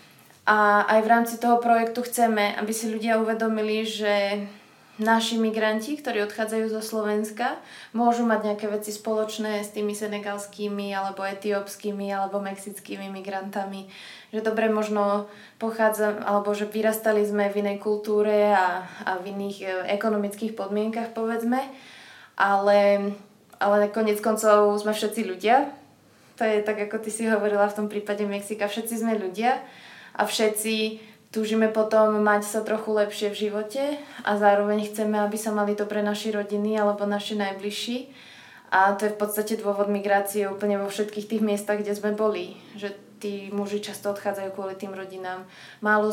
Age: 20-39